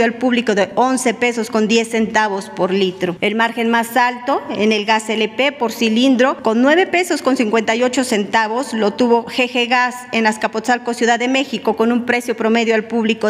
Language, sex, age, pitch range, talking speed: Spanish, female, 40-59, 220-250 Hz, 185 wpm